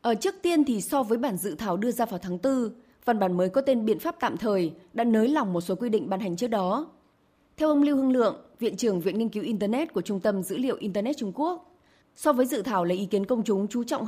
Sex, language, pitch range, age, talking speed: female, Vietnamese, 190-260 Hz, 20-39, 275 wpm